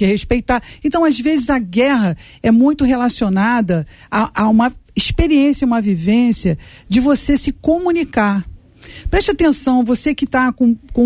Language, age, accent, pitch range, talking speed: Portuguese, 50-69, Brazilian, 225-325 Hz, 150 wpm